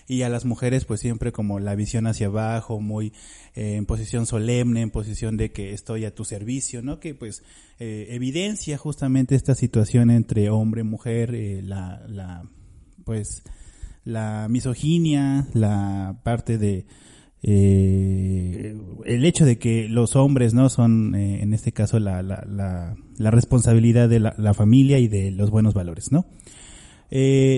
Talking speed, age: 160 wpm, 30-49